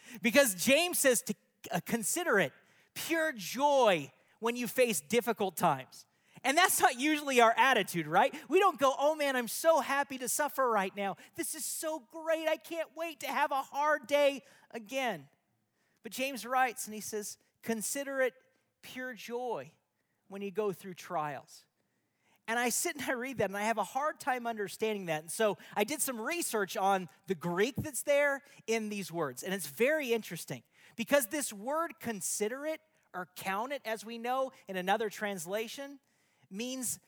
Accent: American